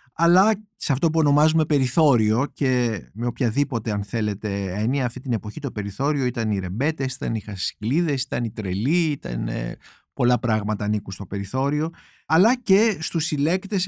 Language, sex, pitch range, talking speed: Greek, male, 115-155 Hz, 155 wpm